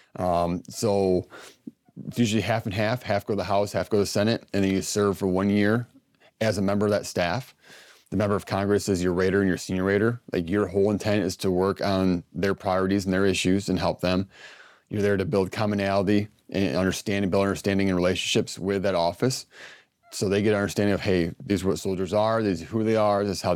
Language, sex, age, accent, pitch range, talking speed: English, male, 30-49, American, 95-105 Hz, 230 wpm